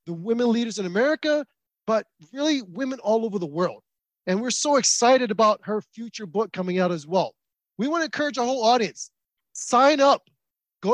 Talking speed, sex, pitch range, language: 185 wpm, male, 200-245 Hz, English